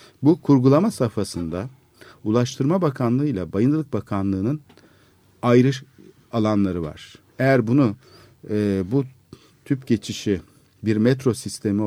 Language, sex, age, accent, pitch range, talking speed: Turkish, male, 50-69, native, 100-135 Hz, 100 wpm